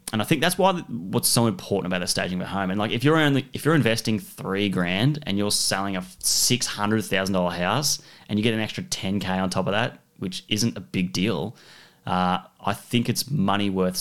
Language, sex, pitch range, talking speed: English, male, 95-125 Hz, 220 wpm